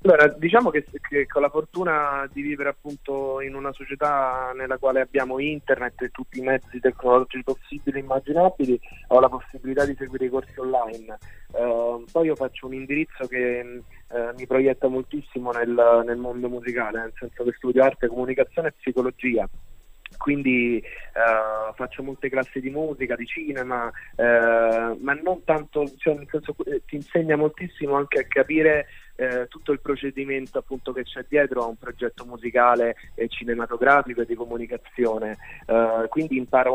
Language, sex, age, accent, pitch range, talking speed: Italian, male, 20-39, native, 120-140 Hz, 160 wpm